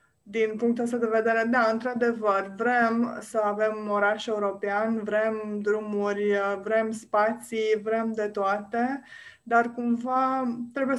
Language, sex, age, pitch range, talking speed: Romanian, female, 20-39, 205-240 Hz, 120 wpm